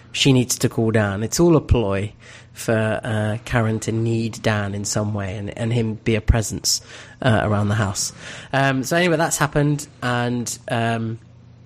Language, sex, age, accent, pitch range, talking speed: English, male, 30-49, British, 115-130 Hz, 180 wpm